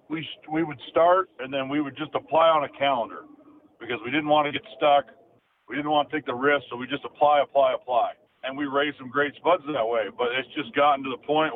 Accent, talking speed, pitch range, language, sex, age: American, 250 wpm, 130-150 Hz, English, male, 50-69